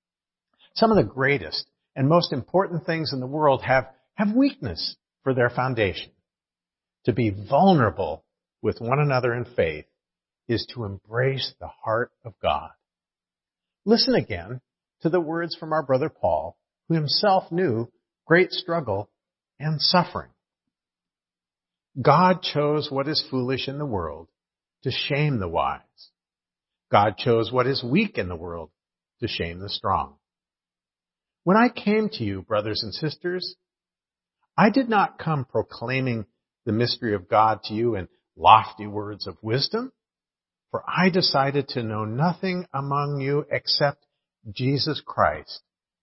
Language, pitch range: English, 110-170 Hz